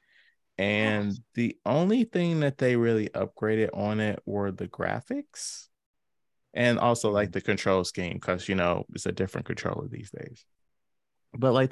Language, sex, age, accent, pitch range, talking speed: English, male, 20-39, American, 105-120 Hz, 155 wpm